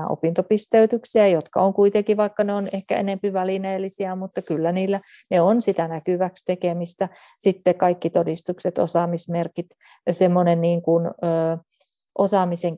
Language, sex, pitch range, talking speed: Finnish, female, 175-210 Hz, 120 wpm